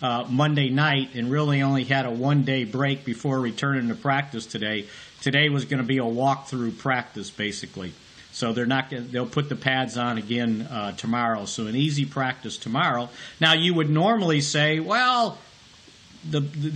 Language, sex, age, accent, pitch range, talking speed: English, male, 50-69, American, 130-160 Hz, 170 wpm